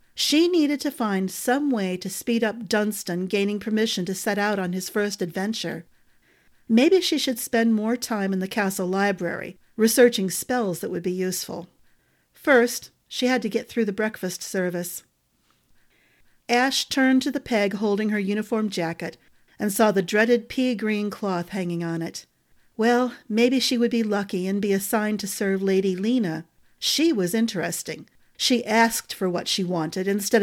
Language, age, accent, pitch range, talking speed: English, 50-69, American, 185-240 Hz, 170 wpm